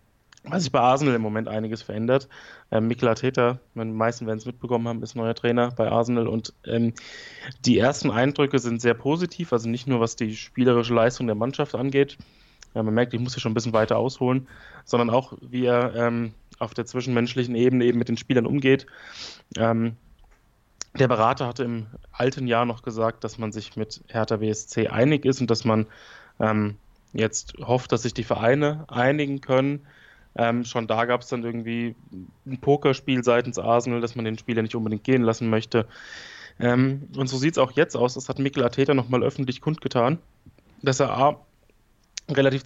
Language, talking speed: German, 185 wpm